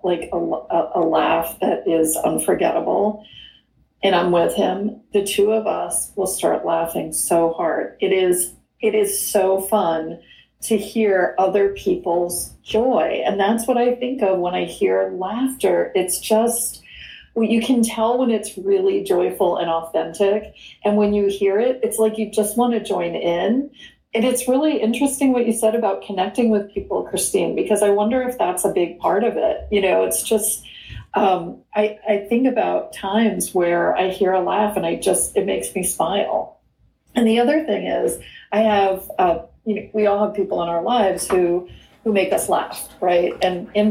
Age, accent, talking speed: 40-59, American, 185 wpm